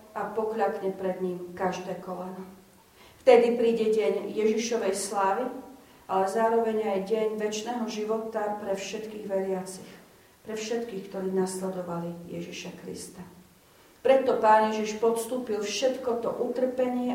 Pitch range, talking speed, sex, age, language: 195-240 Hz, 115 wpm, female, 40-59, Slovak